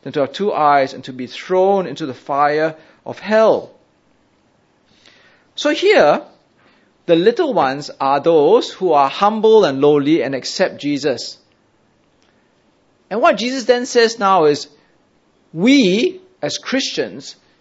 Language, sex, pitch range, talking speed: English, male, 155-235 Hz, 130 wpm